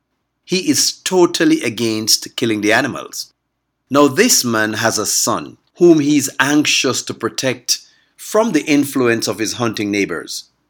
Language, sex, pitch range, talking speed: English, male, 110-155 Hz, 145 wpm